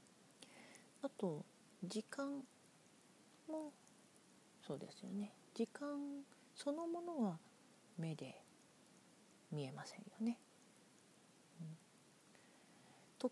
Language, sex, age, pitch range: Japanese, female, 40-59, 190-255 Hz